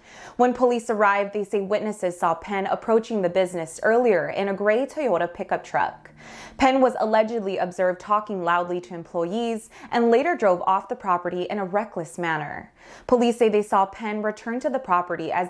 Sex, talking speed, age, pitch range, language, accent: female, 180 wpm, 20-39, 180-230 Hz, English, American